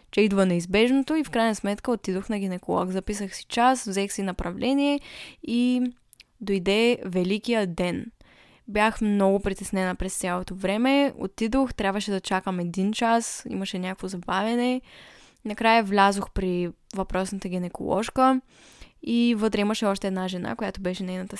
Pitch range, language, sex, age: 190-230 Hz, Bulgarian, female, 10-29